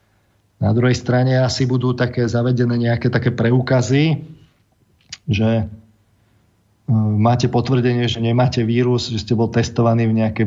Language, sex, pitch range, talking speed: Slovak, male, 110-120 Hz, 125 wpm